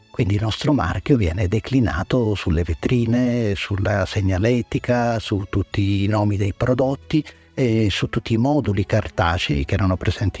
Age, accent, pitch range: 50-69, native, 100-120 Hz